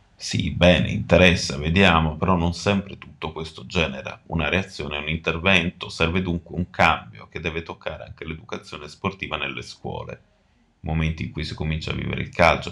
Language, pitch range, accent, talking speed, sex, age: Italian, 75-95 Hz, native, 170 wpm, male, 30-49